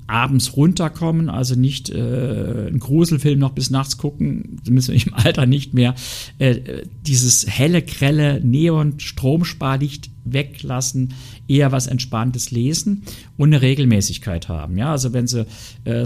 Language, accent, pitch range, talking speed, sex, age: German, German, 110-135 Hz, 135 wpm, male, 50-69